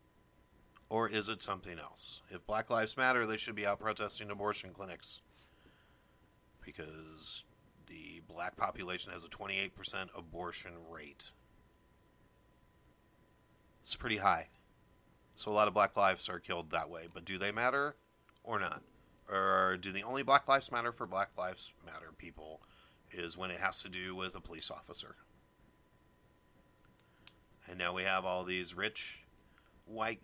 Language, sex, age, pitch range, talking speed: English, male, 30-49, 90-105 Hz, 145 wpm